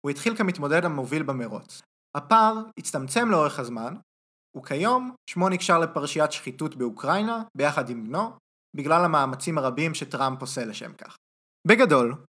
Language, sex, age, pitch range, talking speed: Hebrew, male, 20-39, 135-195 Hz, 125 wpm